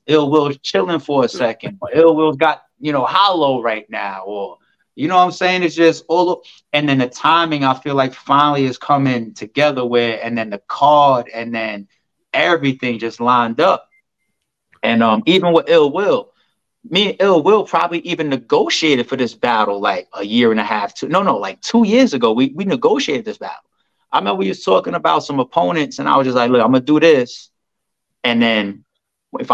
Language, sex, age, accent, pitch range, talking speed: English, male, 30-49, American, 125-170 Hz, 205 wpm